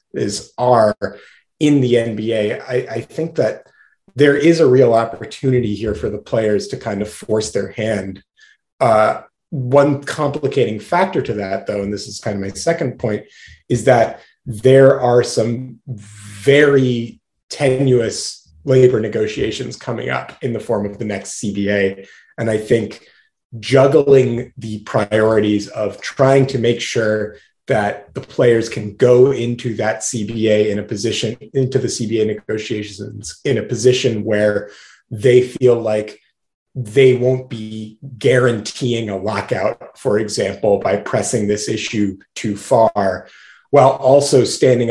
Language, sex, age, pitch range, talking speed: English, male, 30-49, 105-130 Hz, 145 wpm